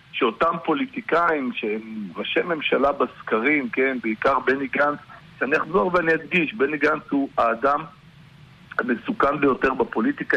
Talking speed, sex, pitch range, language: 120 wpm, male, 135-180 Hz, Hebrew